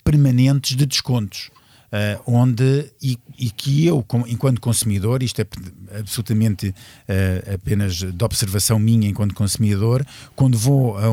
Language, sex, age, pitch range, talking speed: Portuguese, male, 50-69, 110-140 Hz, 140 wpm